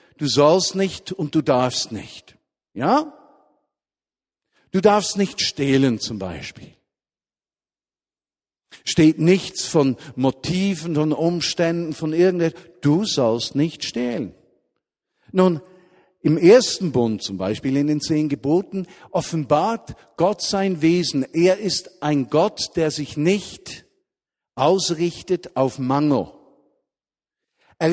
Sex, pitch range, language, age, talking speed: male, 145-190 Hz, German, 50-69, 110 wpm